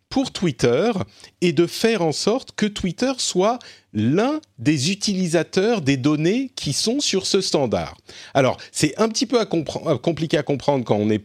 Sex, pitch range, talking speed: male, 110-170 Hz, 175 wpm